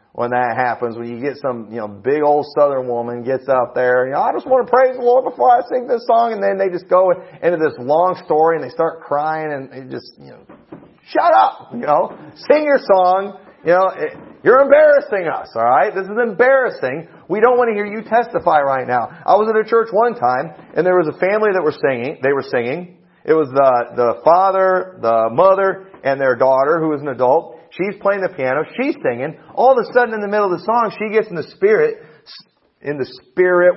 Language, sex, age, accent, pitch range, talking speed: English, male, 40-59, American, 140-215 Hz, 235 wpm